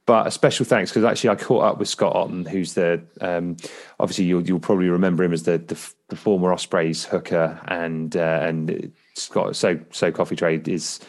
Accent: British